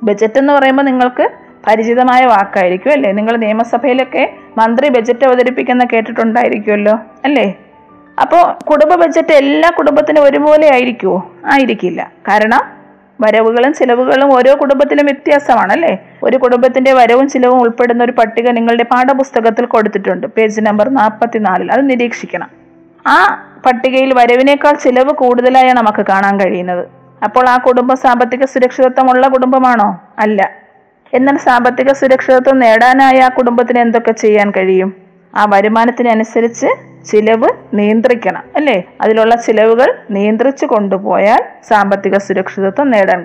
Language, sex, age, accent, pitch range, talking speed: Malayalam, female, 20-39, native, 215-260 Hz, 110 wpm